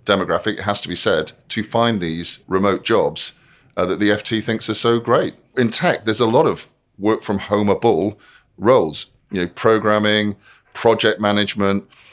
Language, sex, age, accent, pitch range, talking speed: English, male, 30-49, British, 95-120 Hz, 175 wpm